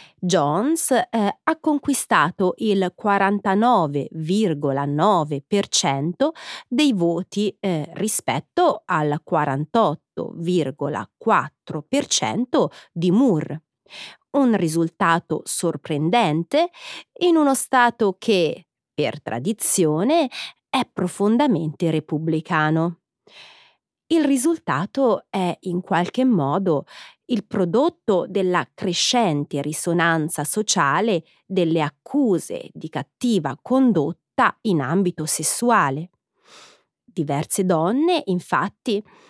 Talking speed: 75 wpm